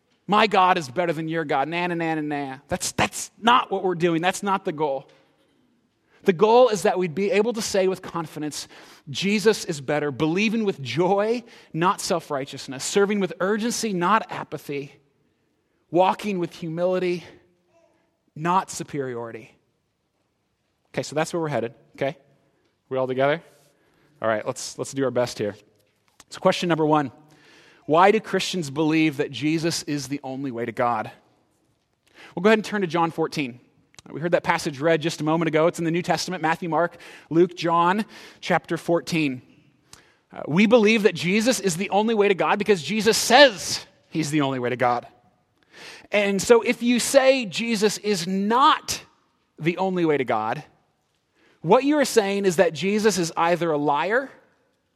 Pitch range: 145-200 Hz